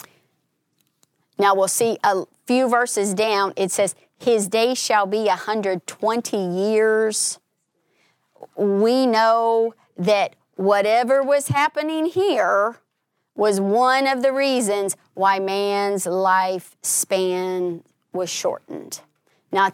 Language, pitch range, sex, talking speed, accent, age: English, 190-235 Hz, female, 105 wpm, American, 30-49